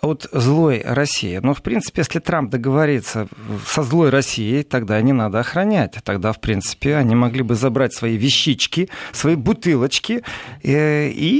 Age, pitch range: 40-59, 125-170 Hz